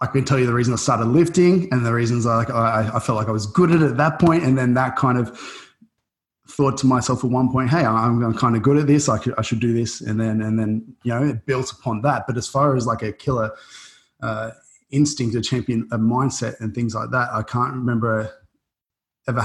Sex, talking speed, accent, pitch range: male, 245 wpm, Australian, 110-135 Hz